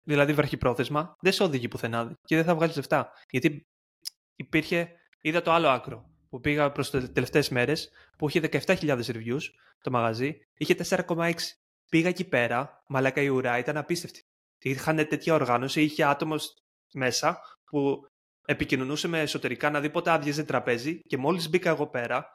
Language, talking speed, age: Greek, 160 wpm, 20-39